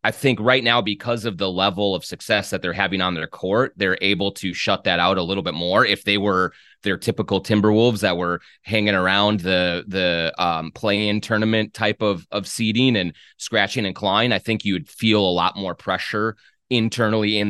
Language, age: English, 30-49